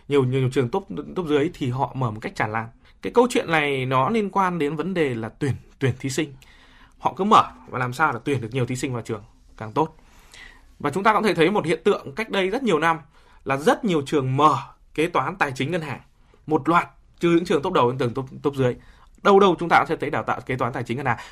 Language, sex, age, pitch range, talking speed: Vietnamese, male, 20-39, 130-180 Hz, 275 wpm